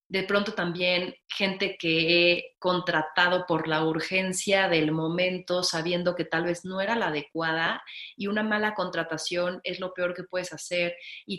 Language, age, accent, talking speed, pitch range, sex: English, 30-49, Mexican, 165 wpm, 165-195 Hz, female